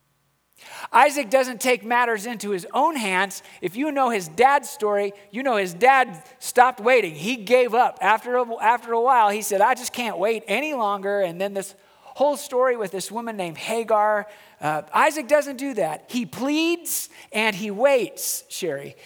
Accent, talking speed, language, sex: American, 175 wpm, English, male